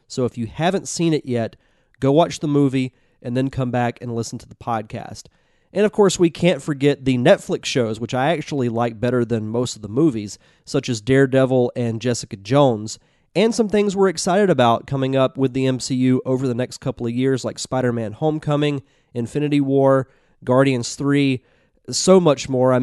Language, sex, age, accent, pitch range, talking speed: English, male, 30-49, American, 125-160 Hz, 190 wpm